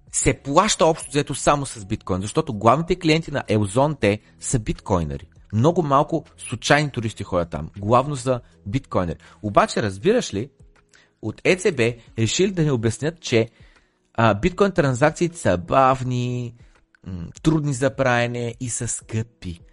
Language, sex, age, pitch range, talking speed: Bulgarian, male, 30-49, 95-135 Hz, 135 wpm